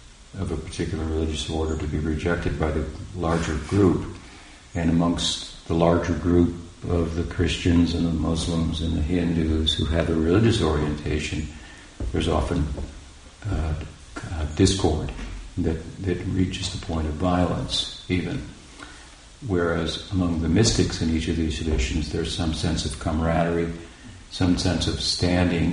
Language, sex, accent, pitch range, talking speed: English, male, American, 80-90 Hz, 145 wpm